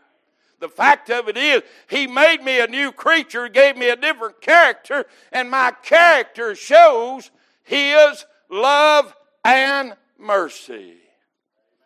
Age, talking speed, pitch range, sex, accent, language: 60-79, 120 wpm, 200-310 Hz, male, American, English